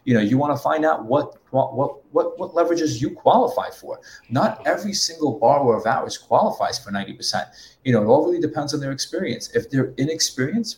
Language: English